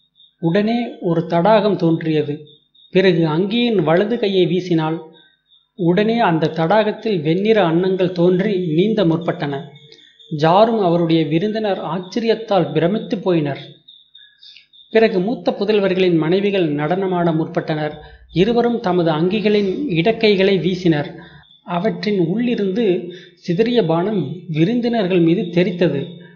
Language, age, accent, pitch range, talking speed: Tamil, 30-49, native, 165-205 Hz, 90 wpm